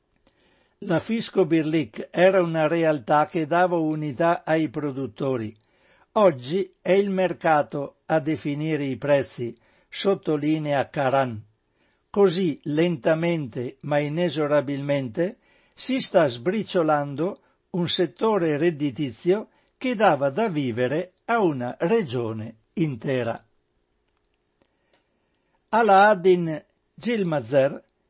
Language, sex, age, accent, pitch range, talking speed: Italian, male, 60-79, native, 140-180 Hz, 90 wpm